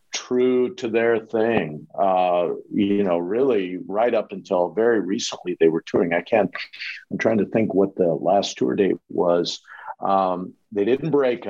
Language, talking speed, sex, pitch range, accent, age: English, 165 wpm, male, 100-135 Hz, American, 50-69